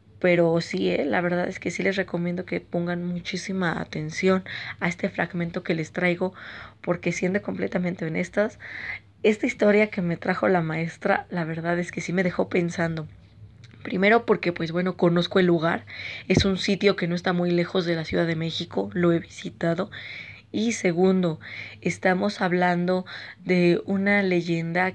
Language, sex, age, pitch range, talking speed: Spanish, female, 20-39, 170-190 Hz, 165 wpm